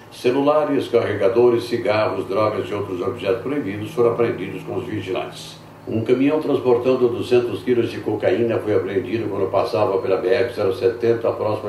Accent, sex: Brazilian, male